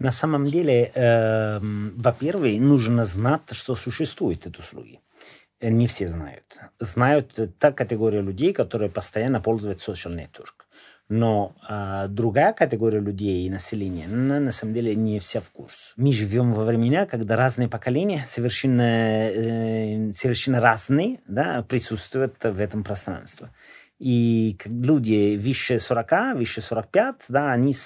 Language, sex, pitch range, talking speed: Russian, male, 105-125 Hz, 130 wpm